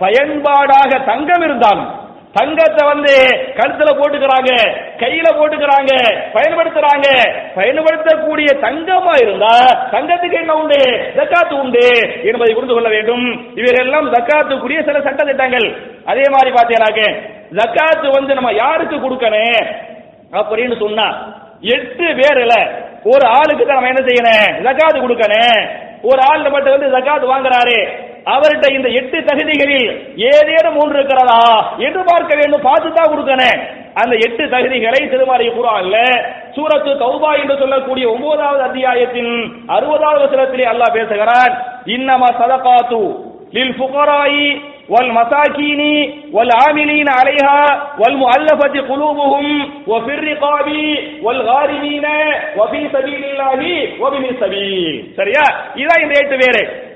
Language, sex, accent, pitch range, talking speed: English, male, Indian, 250-305 Hz, 65 wpm